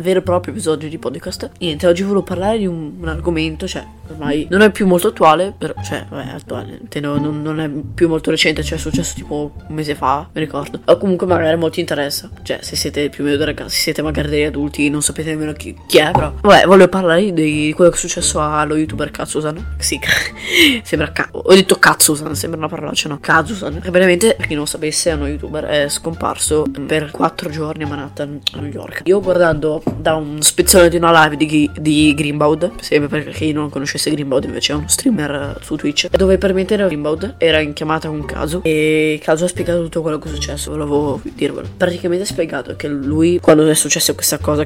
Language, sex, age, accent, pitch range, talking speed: Italian, female, 20-39, native, 150-175 Hz, 220 wpm